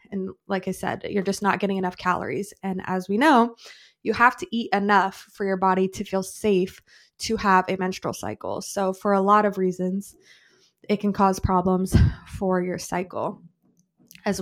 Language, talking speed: English, 185 wpm